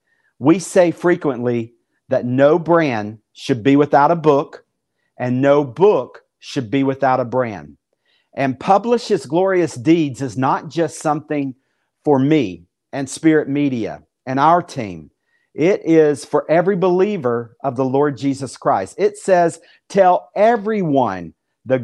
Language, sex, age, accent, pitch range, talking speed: English, male, 50-69, American, 130-165 Hz, 135 wpm